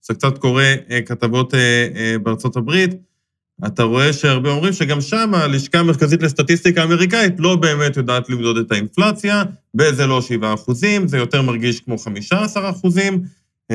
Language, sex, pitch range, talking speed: Hebrew, male, 115-170 Hz, 140 wpm